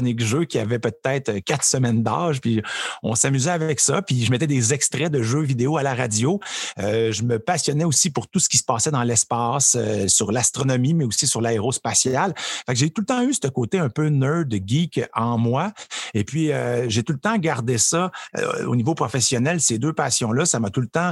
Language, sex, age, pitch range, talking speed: French, male, 50-69, 120-160 Hz, 220 wpm